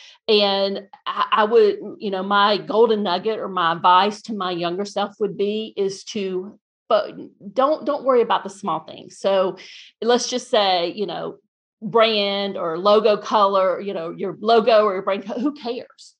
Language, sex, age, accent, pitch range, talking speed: English, female, 40-59, American, 190-240 Hz, 170 wpm